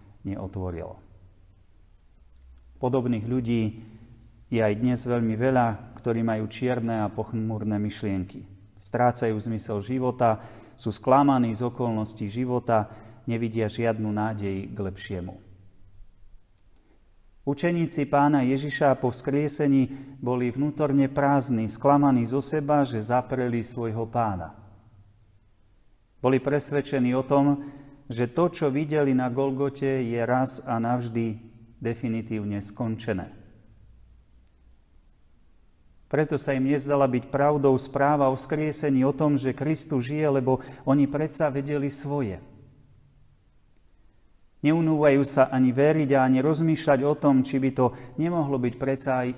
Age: 40-59